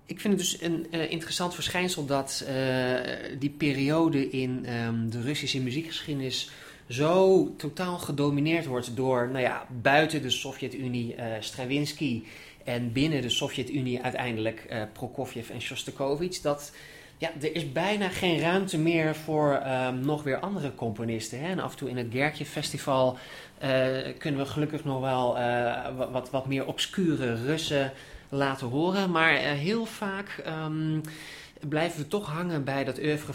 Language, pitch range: English, 130-160 Hz